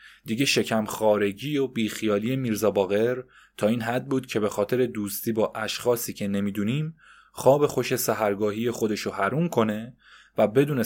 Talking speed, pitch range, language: 150 wpm, 105-130 Hz, Persian